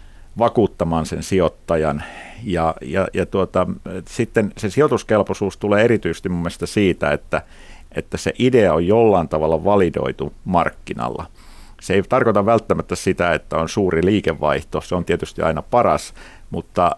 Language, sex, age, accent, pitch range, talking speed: Finnish, male, 50-69, native, 80-100 Hz, 135 wpm